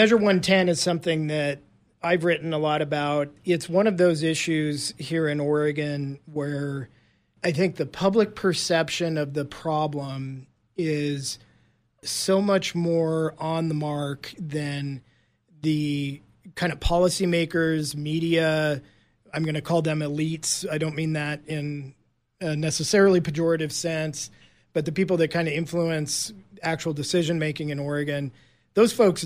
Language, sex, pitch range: English, male, 150-175 Hz